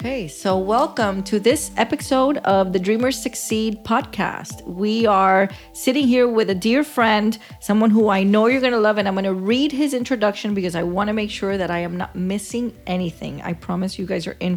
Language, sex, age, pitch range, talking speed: English, female, 40-59, 185-230 Hz, 215 wpm